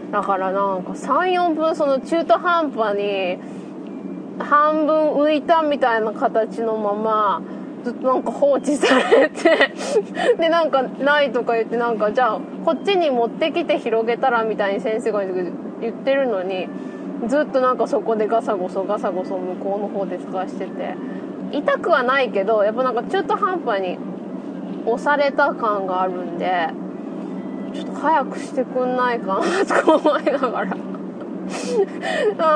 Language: Japanese